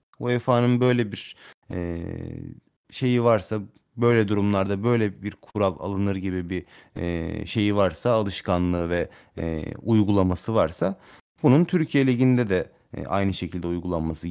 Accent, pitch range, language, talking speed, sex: native, 85-120 Hz, Turkish, 125 wpm, male